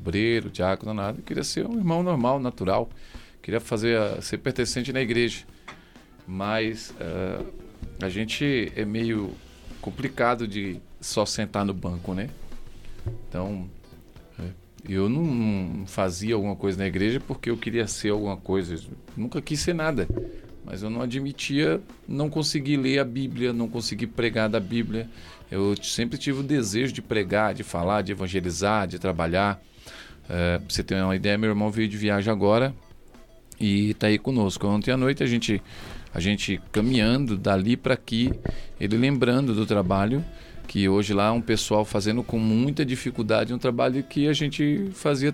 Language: Portuguese